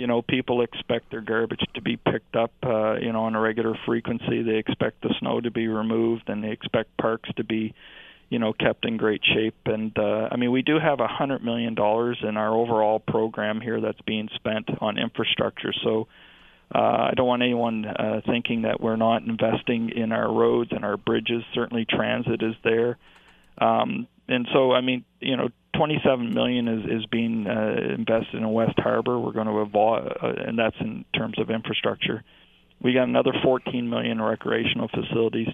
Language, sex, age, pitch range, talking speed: English, male, 40-59, 110-120 Hz, 190 wpm